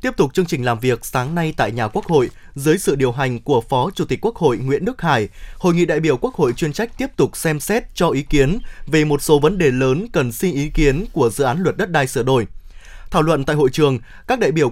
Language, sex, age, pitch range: Vietnamese, male, 20-39, 145-195 Hz